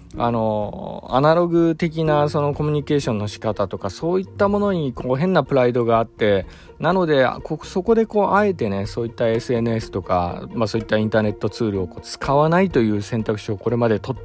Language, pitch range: Japanese, 100-150 Hz